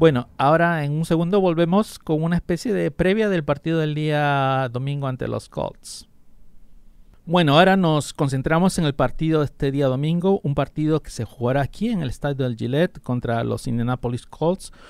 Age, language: 50-69, English